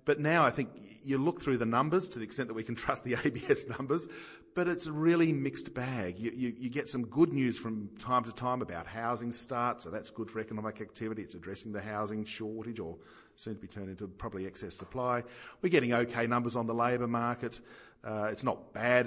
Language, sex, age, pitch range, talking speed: English, male, 40-59, 110-130 Hz, 225 wpm